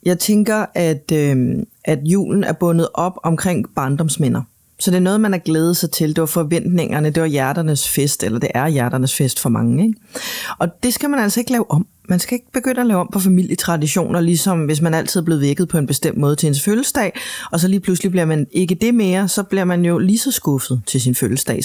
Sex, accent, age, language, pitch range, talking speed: female, native, 30-49, Danish, 155-190 Hz, 235 wpm